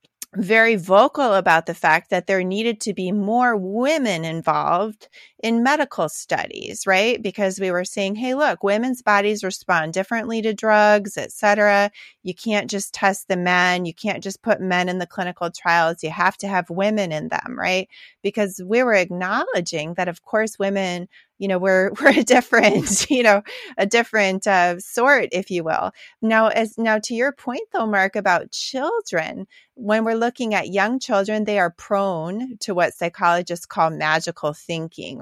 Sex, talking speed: female, 175 wpm